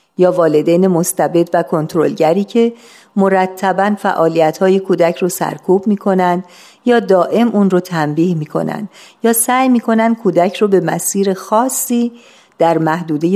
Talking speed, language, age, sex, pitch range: 125 wpm, Persian, 50-69, female, 165-200 Hz